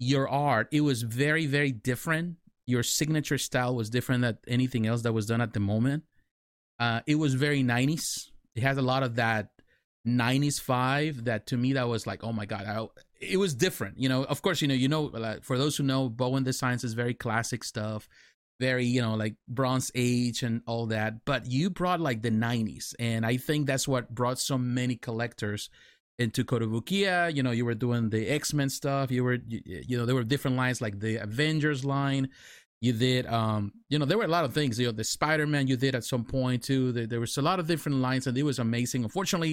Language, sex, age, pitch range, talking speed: English, male, 30-49, 115-140 Hz, 225 wpm